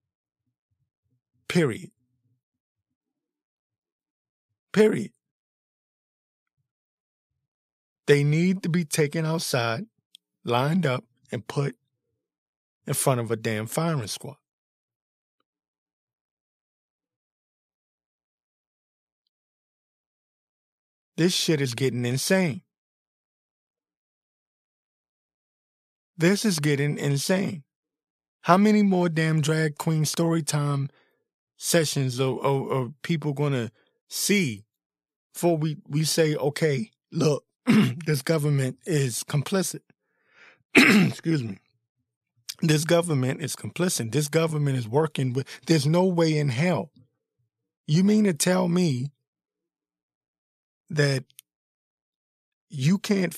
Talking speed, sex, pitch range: 85 wpm, male, 115-165 Hz